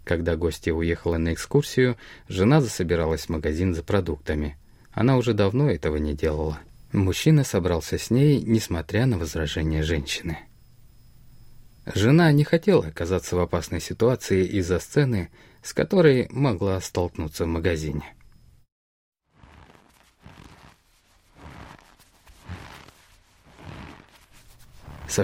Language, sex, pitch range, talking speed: Russian, male, 85-120 Hz, 95 wpm